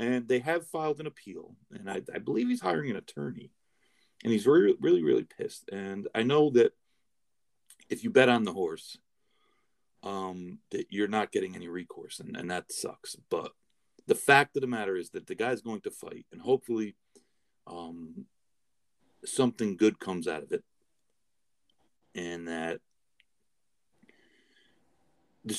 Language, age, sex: English, 40-59, male